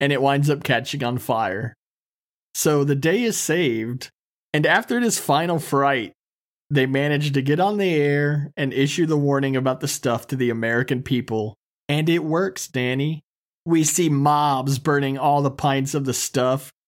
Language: English